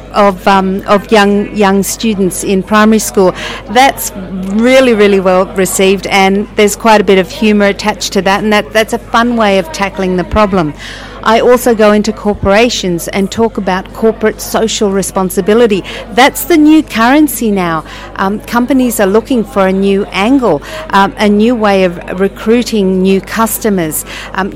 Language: English